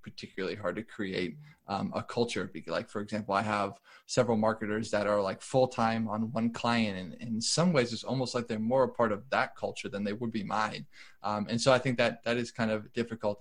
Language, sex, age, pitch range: English, male, 20-39, 105-120 Hz